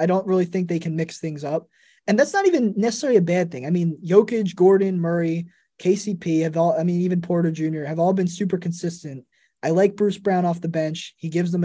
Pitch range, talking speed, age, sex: 165-210 Hz, 230 wpm, 20-39, male